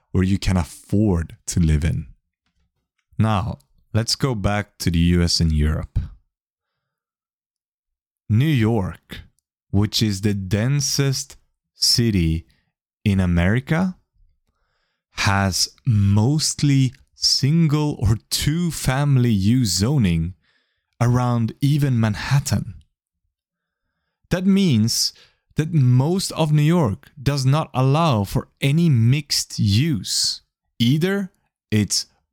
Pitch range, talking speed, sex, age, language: 95-140 Hz, 90 wpm, male, 30-49, English